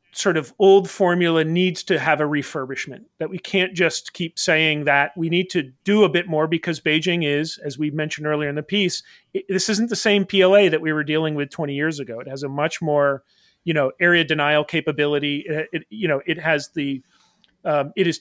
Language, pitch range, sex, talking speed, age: English, 150-190 Hz, male, 220 wpm, 40-59